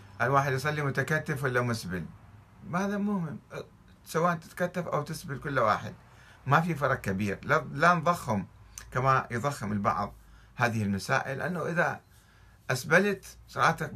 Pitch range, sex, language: 105-145 Hz, male, Arabic